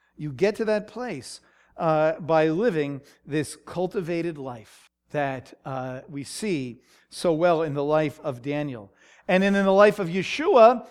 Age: 40-59